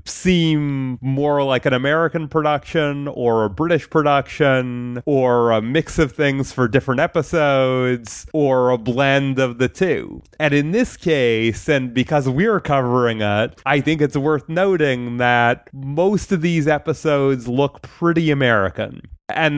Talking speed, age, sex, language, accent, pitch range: 145 wpm, 30-49, male, English, American, 120-155 Hz